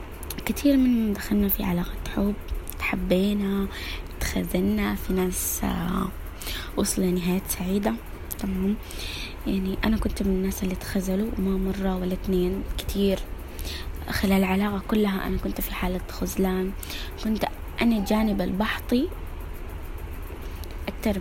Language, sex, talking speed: Arabic, female, 110 wpm